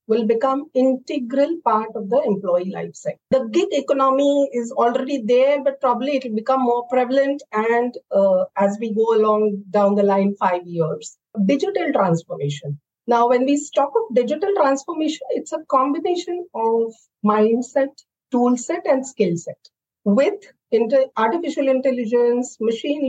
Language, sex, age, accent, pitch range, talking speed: English, female, 50-69, Indian, 220-265 Hz, 145 wpm